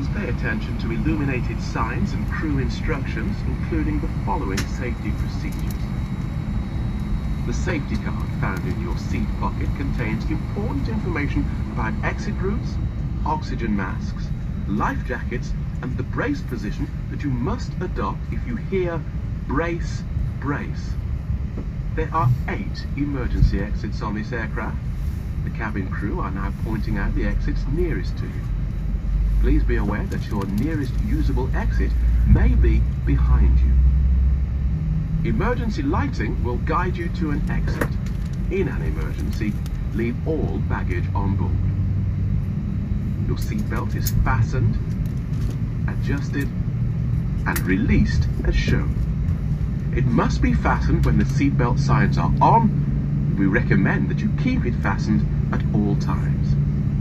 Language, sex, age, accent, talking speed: English, male, 40-59, British, 125 wpm